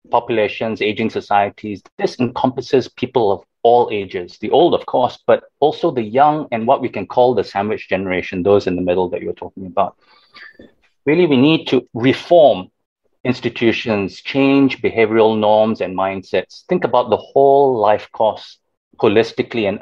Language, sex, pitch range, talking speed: English, male, 100-130 Hz, 155 wpm